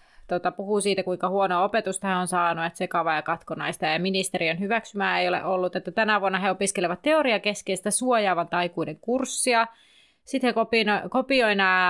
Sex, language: female, Finnish